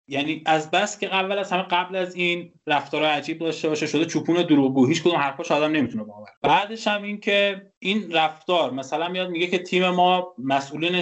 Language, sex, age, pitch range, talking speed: Persian, male, 20-39, 145-180 Hz, 195 wpm